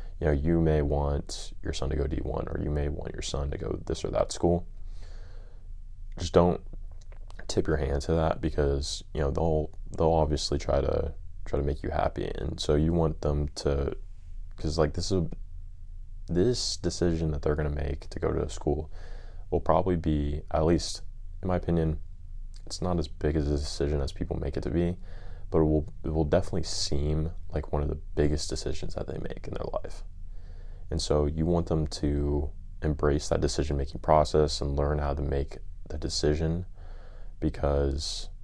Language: English